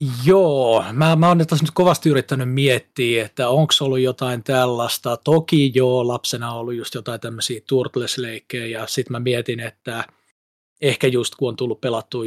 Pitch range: 120-145 Hz